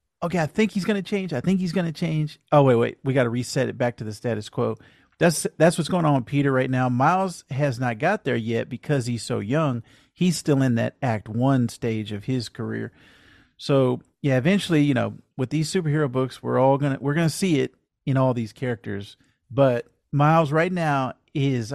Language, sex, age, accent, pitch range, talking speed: English, male, 40-59, American, 120-145 Hz, 225 wpm